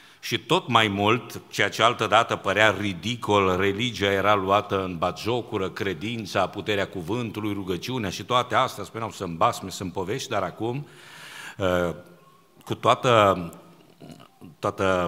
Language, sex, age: Romanian, male, 50-69